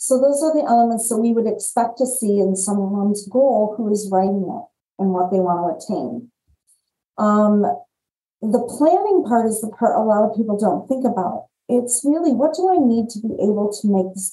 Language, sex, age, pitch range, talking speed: English, female, 40-59, 200-250 Hz, 205 wpm